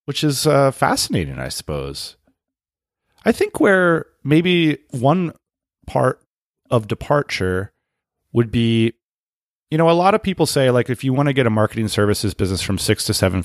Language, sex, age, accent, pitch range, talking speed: English, male, 30-49, American, 90-120 Hz, 165 wpm